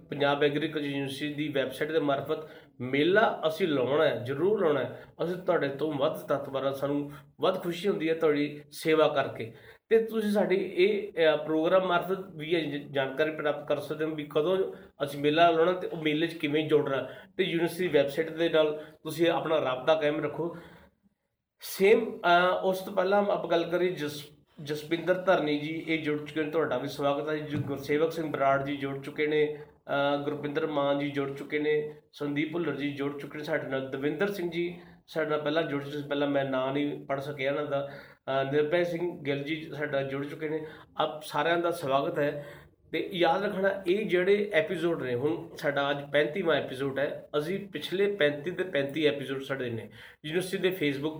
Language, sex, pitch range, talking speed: Punjabi, male, 145-170 Hz, 165 wpm